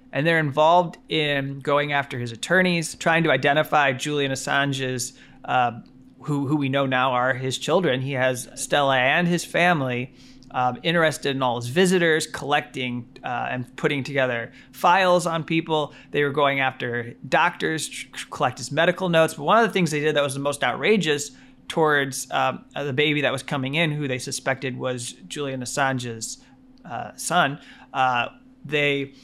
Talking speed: 170 wpm